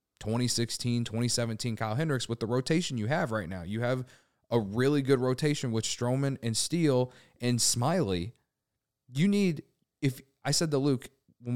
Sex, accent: male, American